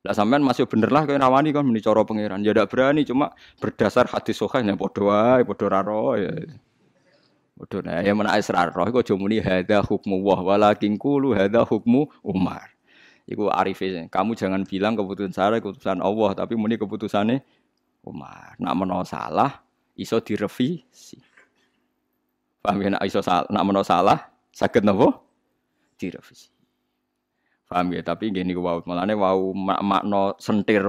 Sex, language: male, Indonesian